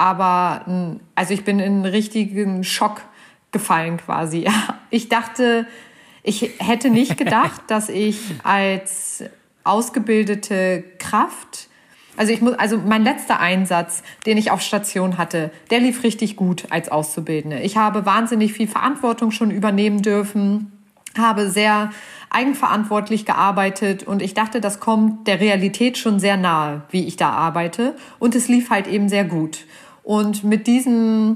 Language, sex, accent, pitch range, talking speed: German, female, German, 195-235 Hz, 140 wpm